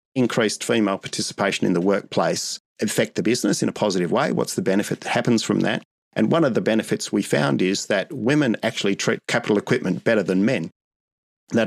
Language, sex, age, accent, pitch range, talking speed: English, male, 40-59, Australian, 95-115 Hz, 195 wpm